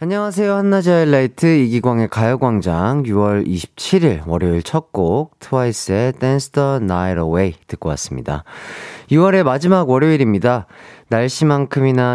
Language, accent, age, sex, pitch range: Korean, native, 30-49, male, 95-155 Hz